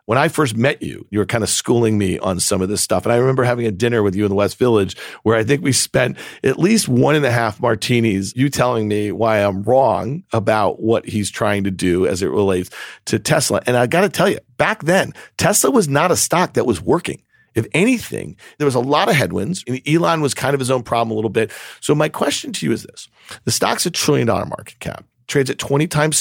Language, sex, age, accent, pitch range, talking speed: English, male, 40-59, American, 110-145 Hz, 250 wpm